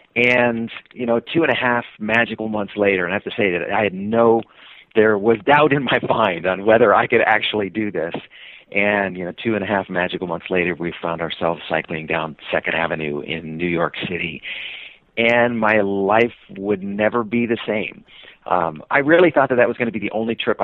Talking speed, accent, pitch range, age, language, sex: 215 wpm, American, 90-115 Hz, 50-69, English, male